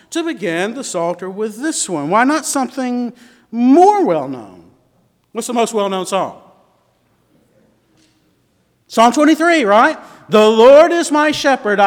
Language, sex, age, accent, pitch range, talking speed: English, male, 50-69, American, 200-280 Hz, 125 wpm